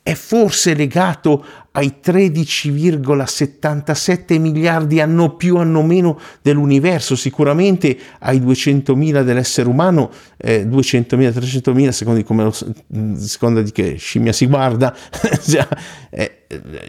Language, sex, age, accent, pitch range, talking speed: Italian, male, 50-69, native, 115-150 Hz, 110 wpm